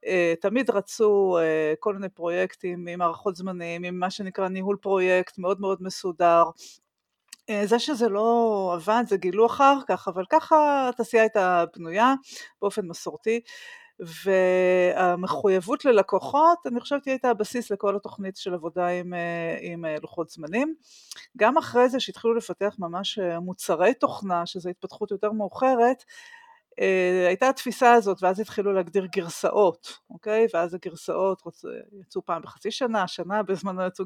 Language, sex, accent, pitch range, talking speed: Hebrew, female, native, 180-230 Hz, 130 wpm